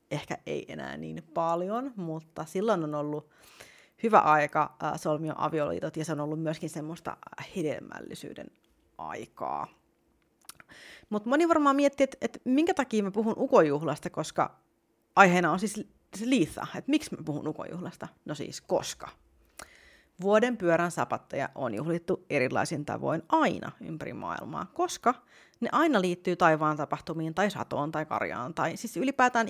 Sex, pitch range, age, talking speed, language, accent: female, 155-225 Hz, 30-49, 140 wpm, Finnish, native